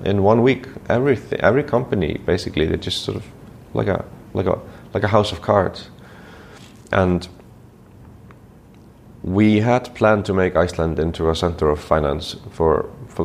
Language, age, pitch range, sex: German, 30-49, 80-100 Hz, male